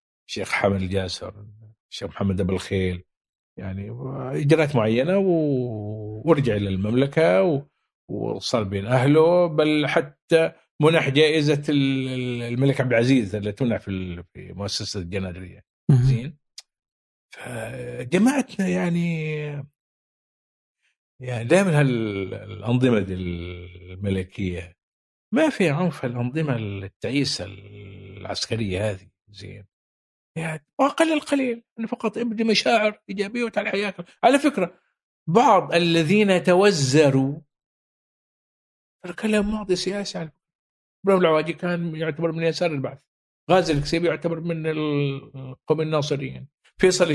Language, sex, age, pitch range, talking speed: Arabic, male, 50-69, 110-170 Hz, 100 wpm